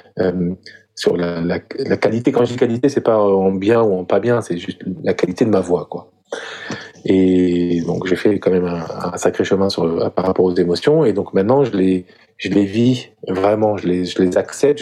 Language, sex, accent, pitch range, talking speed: French, male, French, 90-110 Hz, 225 wpm